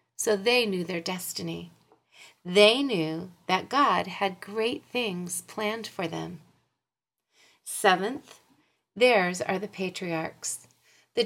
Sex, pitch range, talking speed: female, 185-255 Hz, 110 wpm